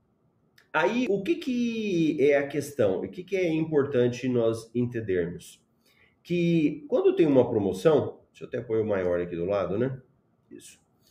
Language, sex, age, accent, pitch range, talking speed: Portuguese, male, 30-49, Brazilian, 125-195 Hz, 160 wpm